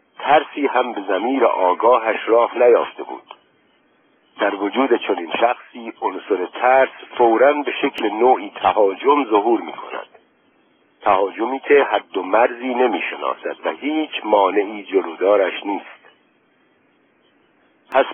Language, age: Persian, 60-79